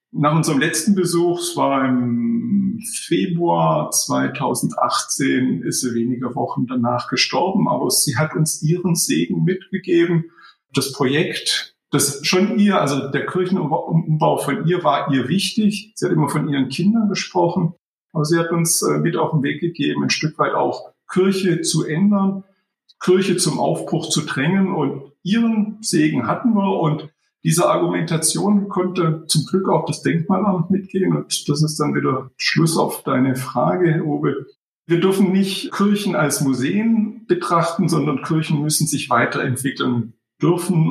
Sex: male